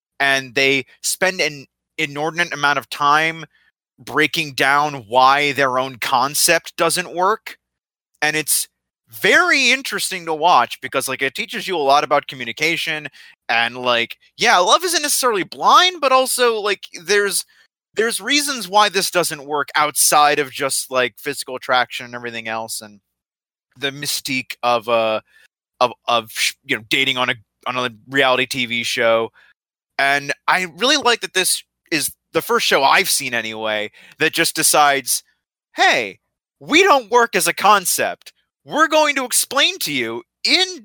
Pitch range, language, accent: 135-210 Hz, English, American